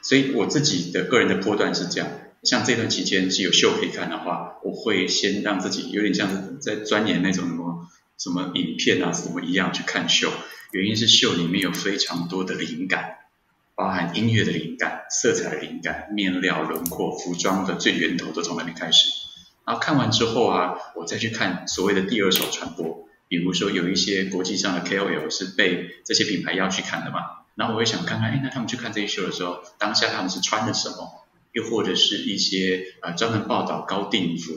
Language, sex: Chinese, male